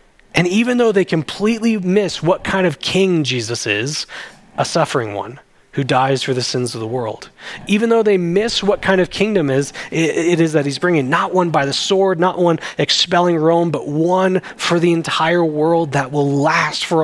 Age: 20-39